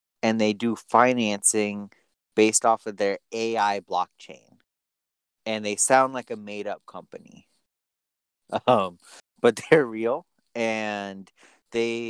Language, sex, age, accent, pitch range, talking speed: English, male, 30-49, American, 95-115 Hz, 115 wpm